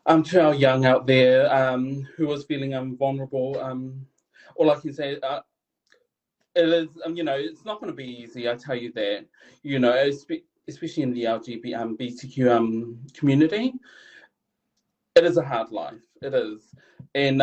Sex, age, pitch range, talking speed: male, 30-49, 135-185 Hz, 170 wpm